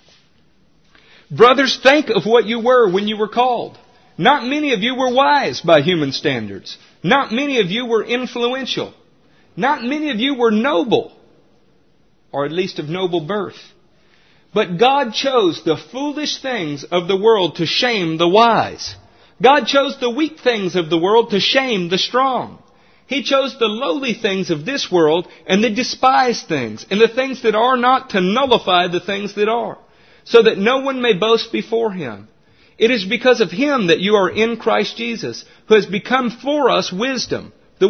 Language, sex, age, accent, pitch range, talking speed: English, male, 50-69, American, 185-260 Hz, 175 wpm